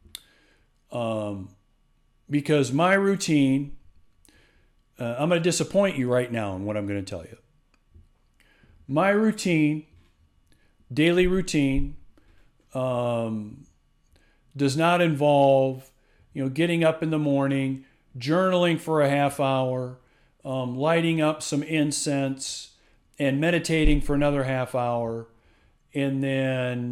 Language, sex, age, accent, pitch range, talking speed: English, male, 40-59, American, 115-150 Hz, 115 wpm